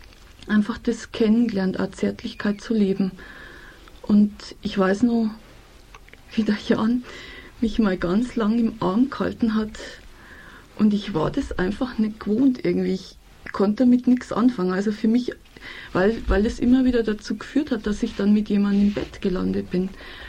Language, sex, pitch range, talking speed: German, female, 195-235 Hz, 165 wpm